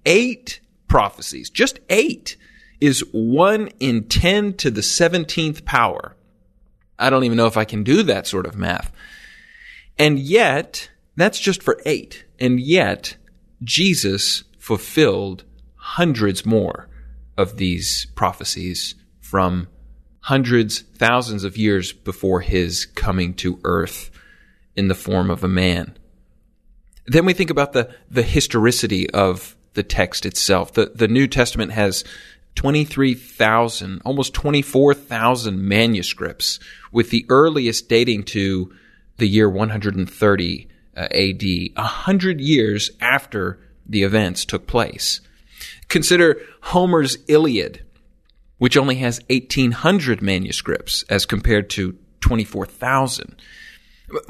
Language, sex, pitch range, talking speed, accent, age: English, male, 95-140 Hz, 115 wpm, American, 30-49